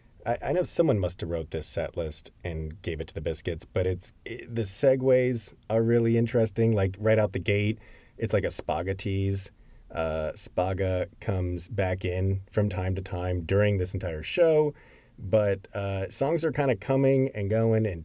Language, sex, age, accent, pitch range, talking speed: English, male, 30-49, American, 95-110 Hz, 185 wpm